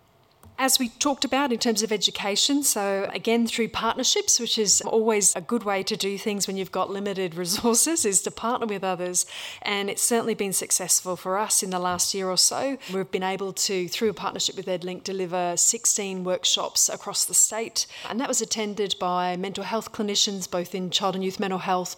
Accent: Australian